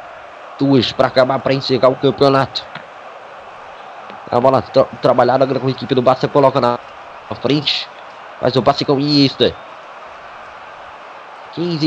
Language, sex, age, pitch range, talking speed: Portuguese, male, 20-39, 115-175 Hz, 130 wpm